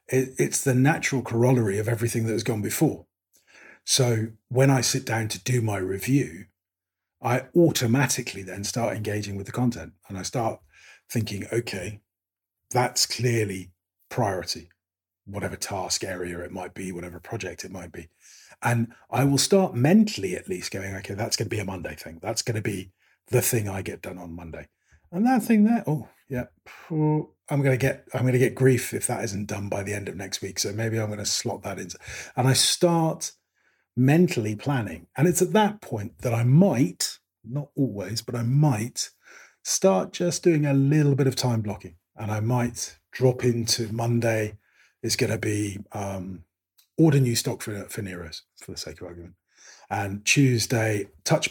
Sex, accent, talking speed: male, British, 185 wpm